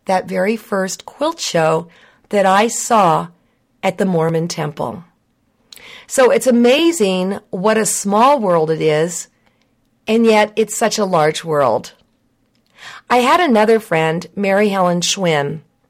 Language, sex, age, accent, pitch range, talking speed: English, female, 50-69, American, 170-225 Hz, 130 wpm